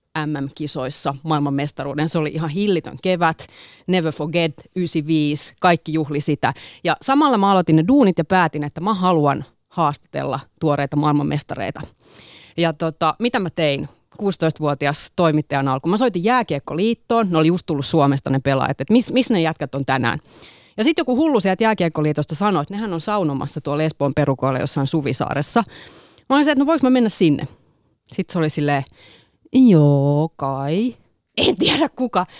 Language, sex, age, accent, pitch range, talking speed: Finnish, female, 30-49, native, 150-215 Hz, 160 wpm